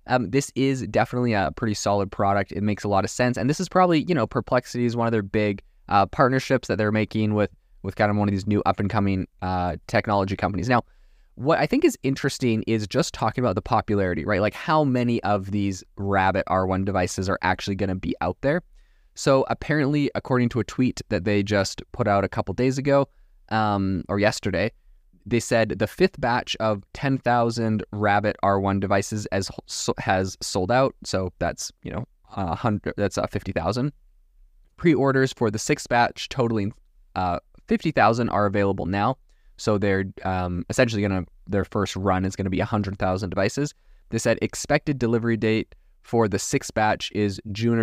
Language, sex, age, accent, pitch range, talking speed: English, male, 20-39, American, 95-120 Hz, 180 wpm